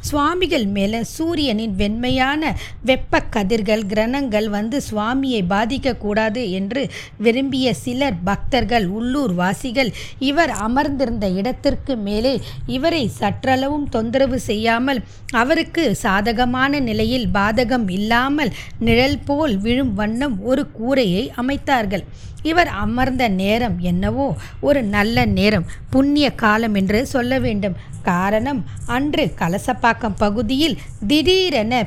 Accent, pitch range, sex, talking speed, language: native, 210-280 Hz, female, 100 wpm, Tamil